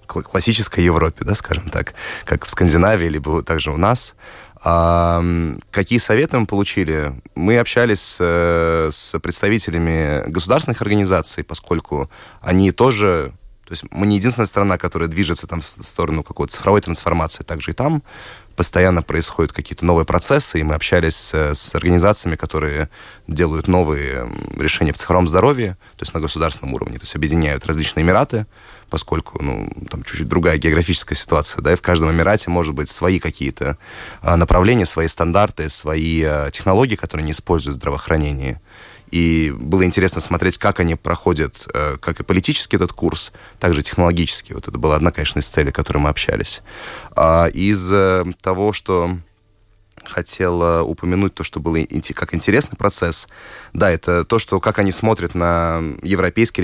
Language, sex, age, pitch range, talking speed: Russian, male, 20-39, 80-100 Hz, 150 wpm